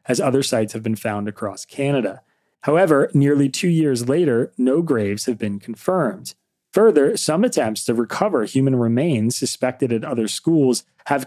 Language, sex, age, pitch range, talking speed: English, male, 30-49, 110-140 Hz, 160 wpm